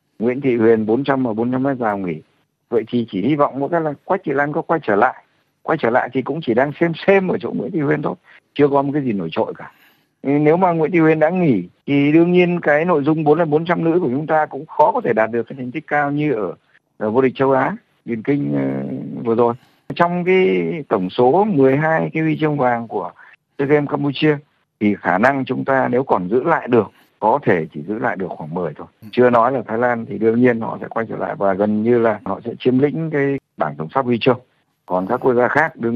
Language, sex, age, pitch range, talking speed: Vietnamese, male, 60-79, 115-155 Hz, 250 wpm